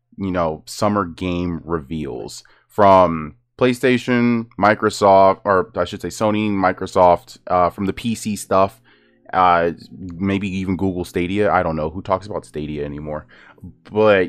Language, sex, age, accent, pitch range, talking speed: English, male, 20-39, American, 95-120 Hz, 140 wpm